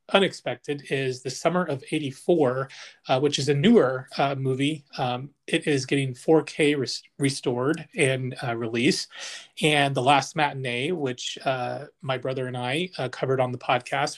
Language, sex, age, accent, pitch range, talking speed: English, male, 30-49, American, 125-150 Hz, 155 wpm